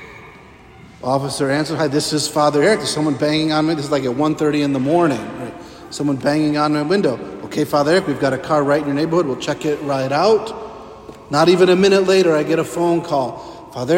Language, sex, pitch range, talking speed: English, male, 145-170 Hz, 225 wpm